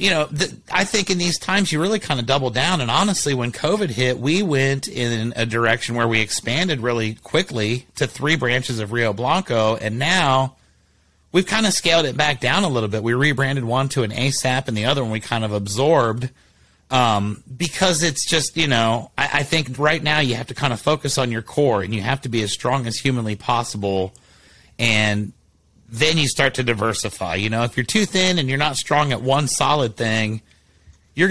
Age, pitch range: 30-49, 110-145 Hz